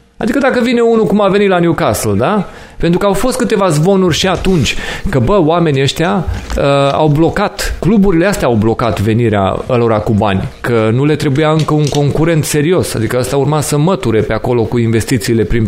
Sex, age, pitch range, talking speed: male, 30-49, 125-190 Hz, 195 wpm